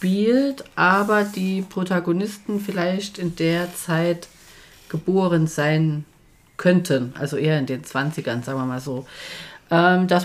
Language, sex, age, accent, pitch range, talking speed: German, female, 40-59, German, 160-200 Hz, 125 wpm